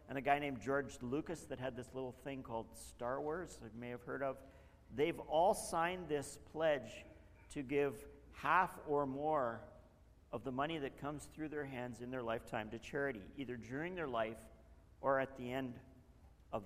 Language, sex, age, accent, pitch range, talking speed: English, male, 50-69, American, 115-155 Hz, 185 wpm